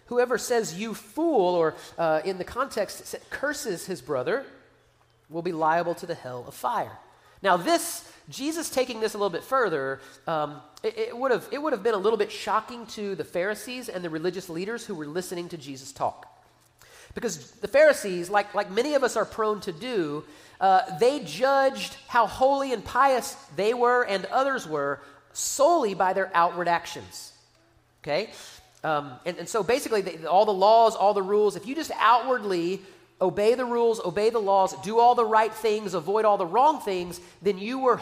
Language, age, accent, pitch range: English, 40-59, American, 175-245 Hz